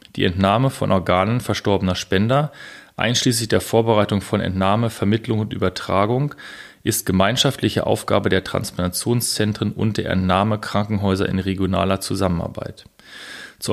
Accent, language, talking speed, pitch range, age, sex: German, German, 120 wpm, 95-115 Hz, 30-49, male